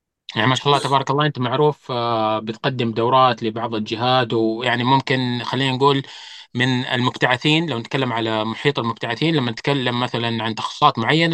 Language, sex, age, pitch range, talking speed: Arabic, male, 20-39, 115-145 Hz, 160 wpm